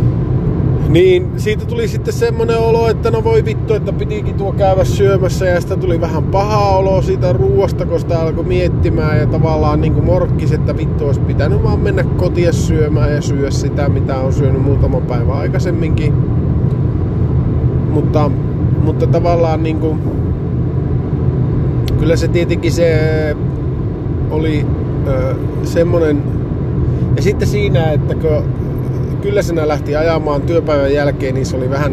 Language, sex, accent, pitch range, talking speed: Finnish, male, native, 130-150 Hz, 135 wpm